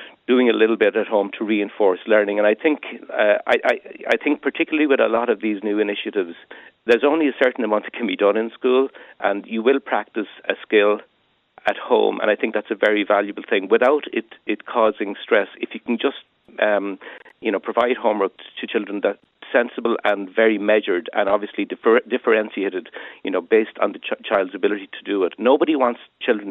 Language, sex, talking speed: English, male, 205 wpm